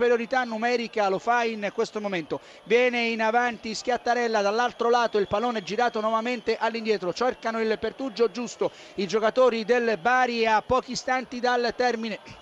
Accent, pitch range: native, 215-250 Hz